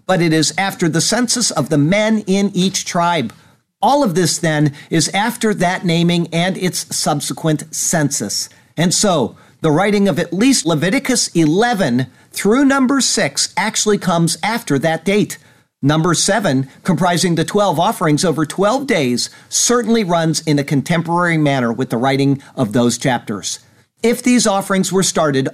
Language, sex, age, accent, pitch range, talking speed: English, male, 50-69, American, 140-190 Hz, 155 wpm